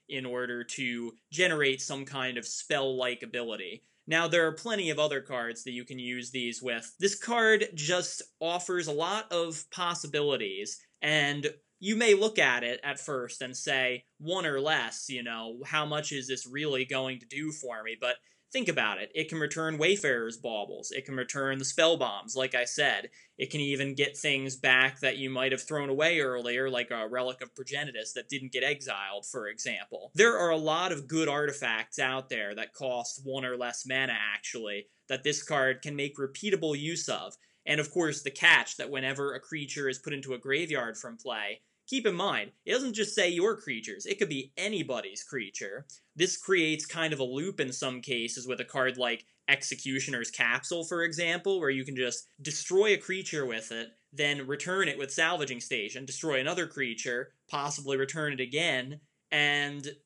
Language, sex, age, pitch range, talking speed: English, male, 20-39, 130-160 Hz, 190 wpm